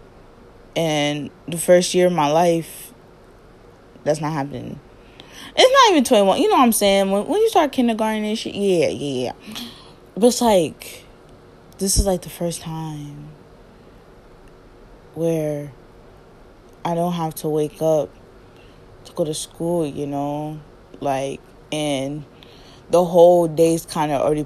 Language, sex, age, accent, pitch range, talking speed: English, female, 20-39, American, 140-215 Hz, 145 wpm